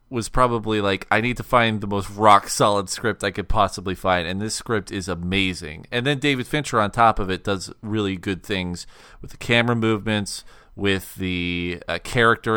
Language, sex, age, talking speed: English, male, 30-49, 190 wpm